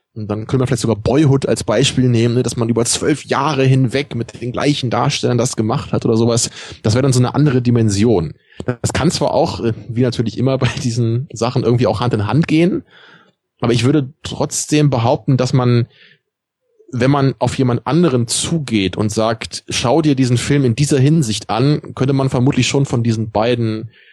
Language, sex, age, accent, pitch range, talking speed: German, male, 20-39, German, 110-135 Hz, 195 wpm